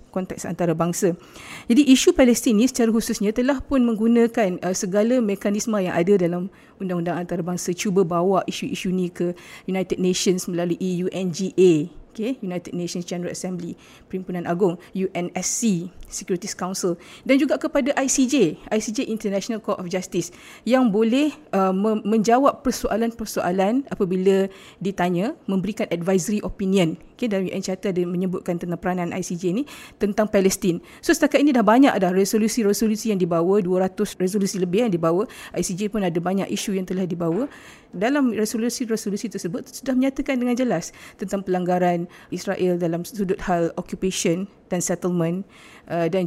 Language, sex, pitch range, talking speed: Malay, female, 180-225 Hz, 140 wpm